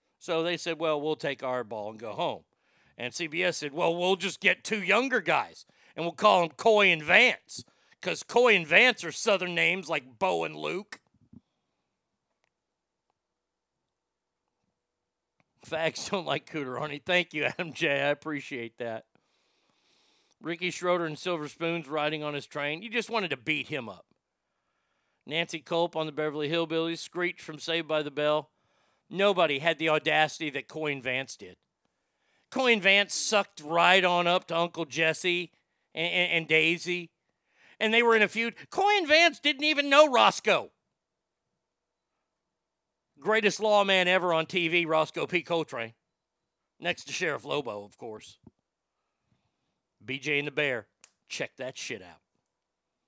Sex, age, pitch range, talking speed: male, 50-69, 145-185 Hz, 150 wpm